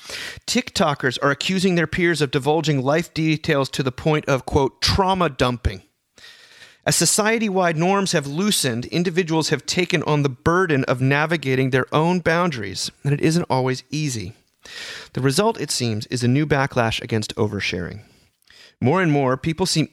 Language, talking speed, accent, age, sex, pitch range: English, 155 wpm, American, 30-49, male, 130-170 Hz